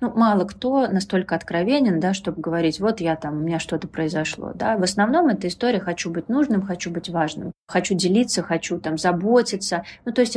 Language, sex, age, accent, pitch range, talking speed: Russian, female, 20-39, native, 165-200 Hz, 195 wpm